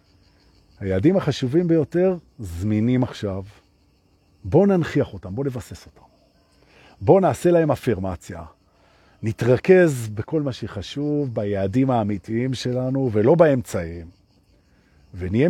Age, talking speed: 50-69, 95 wpm